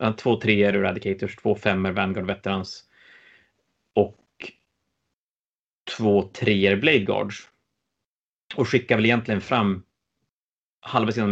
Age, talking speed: 30-49, 95 wpm